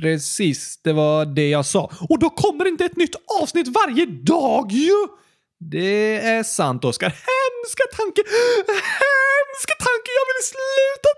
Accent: native